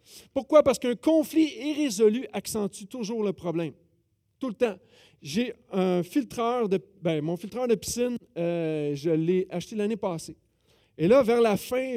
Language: French